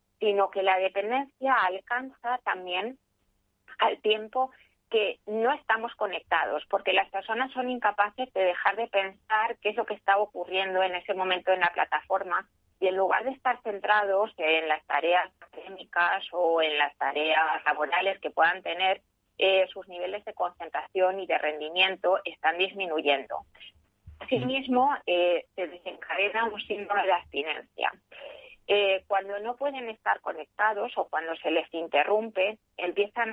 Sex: female